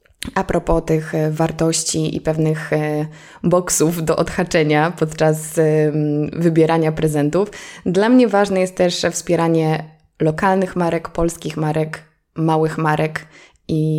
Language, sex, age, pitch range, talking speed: Polish, female, 20-39, 155-185 Hz, 105 wpm